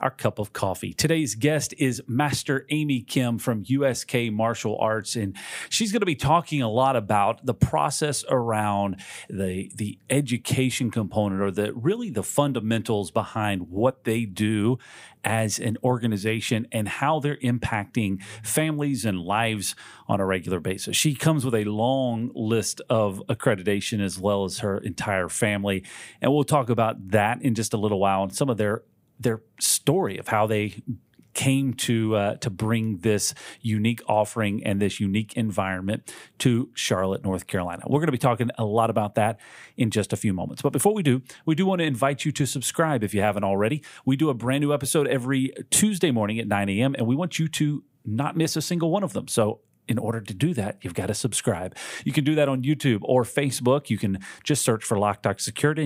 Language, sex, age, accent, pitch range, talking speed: English, male, 40-59, American, 105-135 Hz, 195 wpm